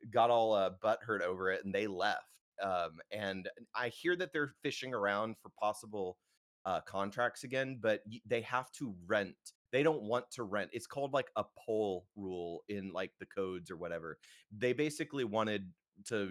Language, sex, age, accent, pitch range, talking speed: English, male, 30-49, American, 100-120 Hz, 180 wpm